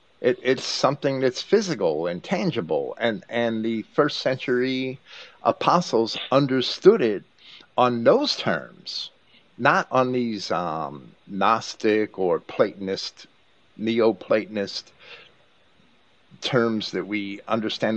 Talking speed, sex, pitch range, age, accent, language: 100 wpm, male, 110-135 Hz, 50-69, American, English